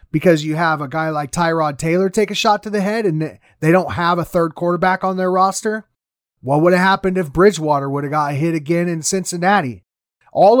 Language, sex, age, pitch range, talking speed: English, male, 30-49, 150-190 Hz, 215 wpm